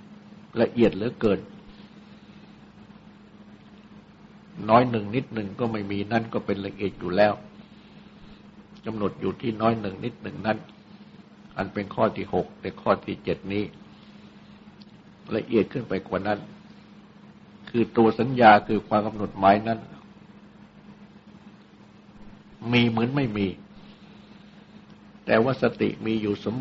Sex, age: male, 60-79